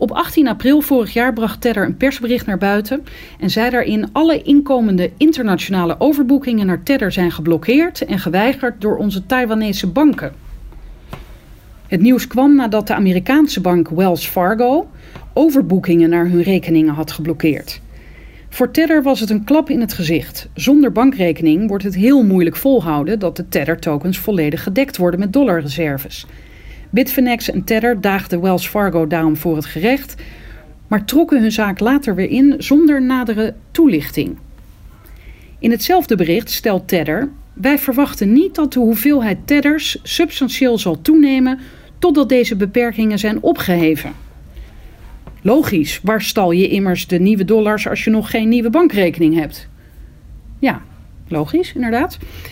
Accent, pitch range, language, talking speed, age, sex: Dutch, 180-270 Hz, Dutch, 145 wpm, 40-59, female